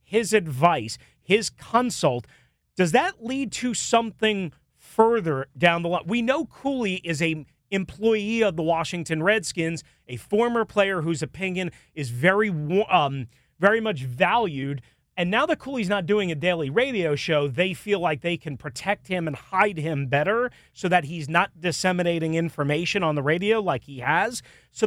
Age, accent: 30-49, American